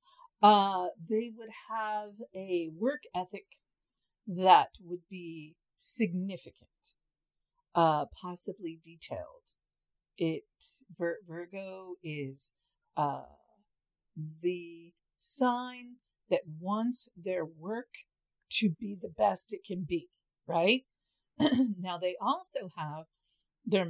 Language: English